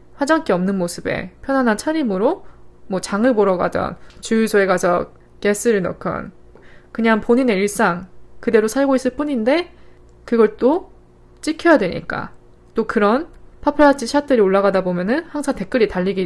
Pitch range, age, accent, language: 195-255 Hz, 20-39, native, Korean